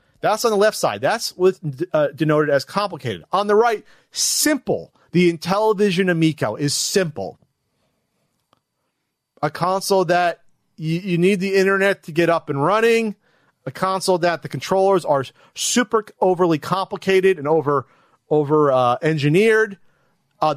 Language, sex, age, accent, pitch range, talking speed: English, male, 40-59, American, 155-210 Hz, 145 wpm